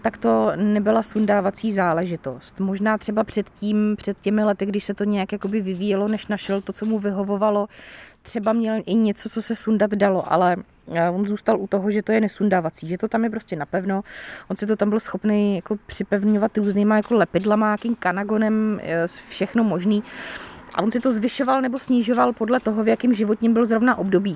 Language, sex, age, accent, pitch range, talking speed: Czech, female, 30-49, native, 200-230 Hz, 190 wpm